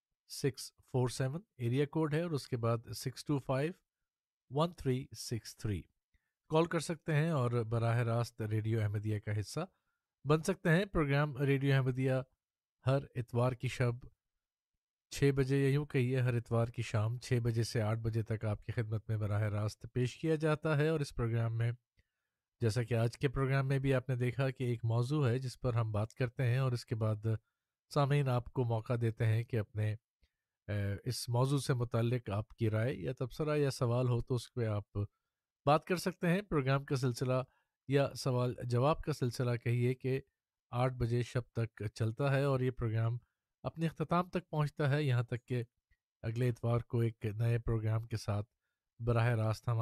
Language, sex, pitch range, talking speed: Urdu, male, 115-135 Hz, 185 wpm